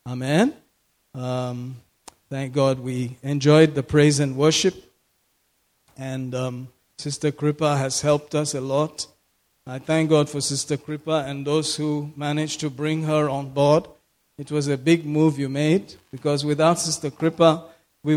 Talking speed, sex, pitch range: 150 wpm, male, 140-160 Hz